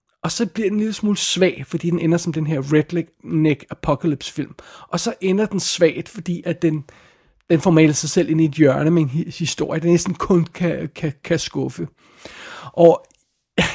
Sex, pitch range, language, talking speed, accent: male, 160-190 Hz, Danish, 200 wpm, native